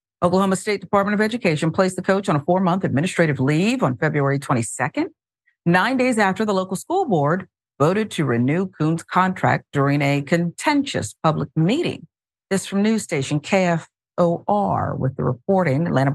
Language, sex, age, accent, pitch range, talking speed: English, female, 50-69, American, 145-210 Hz, 155 wpm